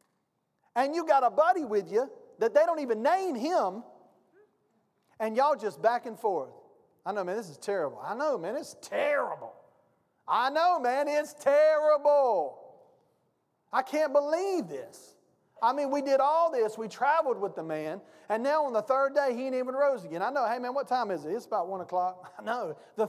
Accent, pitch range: American, 195-295 Hz